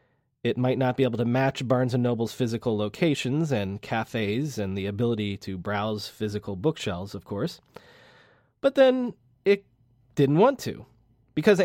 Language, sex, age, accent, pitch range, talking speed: English, male, 30-49, American, 115-165 Hz, 150 wpm